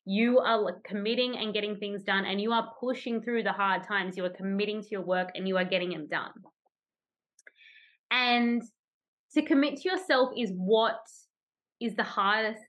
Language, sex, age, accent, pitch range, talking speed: English, female, 20-39, Australian, 180-230 Hz, 175 wpm